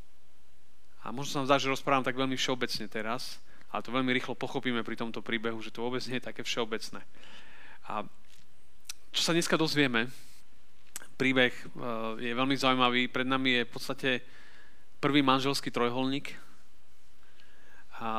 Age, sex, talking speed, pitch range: 30-49, male, 140 wpm, 110-140 Hz